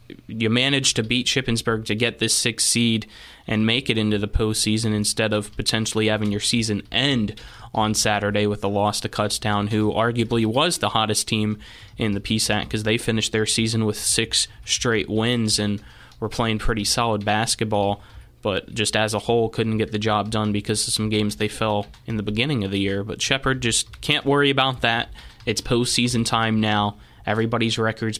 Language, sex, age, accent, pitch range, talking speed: English, male, 20-39, American, 105-115 Hz, 190 wpm